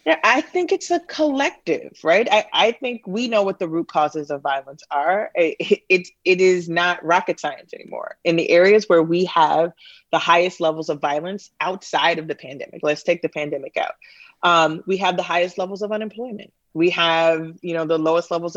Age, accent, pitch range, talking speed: 30-49, American, 160-195 Hz, 200 wpm